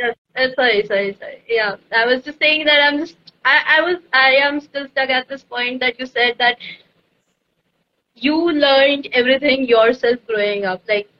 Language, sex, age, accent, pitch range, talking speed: English, female, 20-39, Indian, 240-285 Hz, 175 wpm